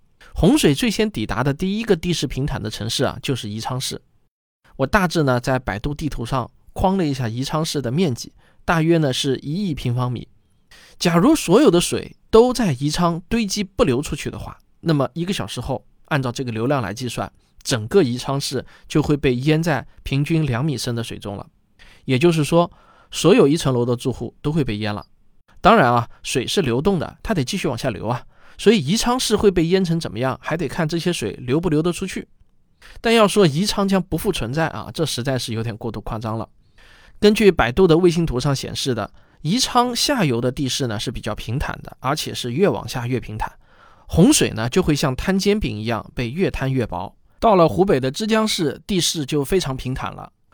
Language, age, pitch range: Chinese, 20-39, 120-170 Hz